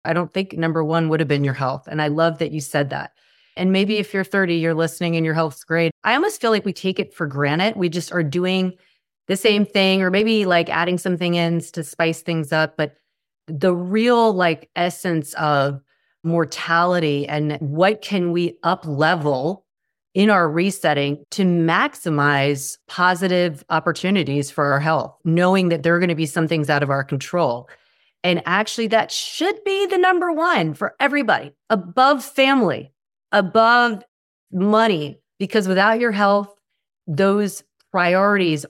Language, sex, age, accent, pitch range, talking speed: English, female, 30-49, American, 155-195 Hz, 170 wpm